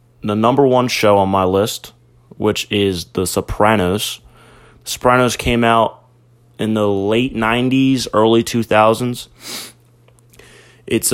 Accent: American